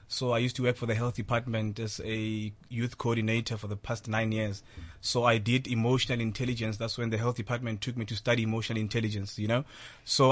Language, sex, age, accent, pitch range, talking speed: English, male, 20-39, South African, 115-135 Hz, 215 wpm